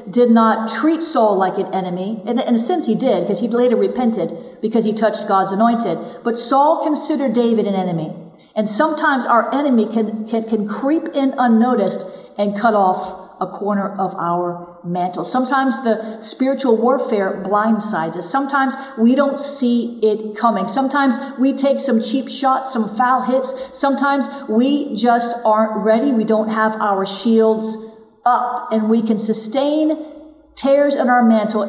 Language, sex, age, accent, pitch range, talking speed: English, female, 50-69, American, 210-255 Hz, 160 wpm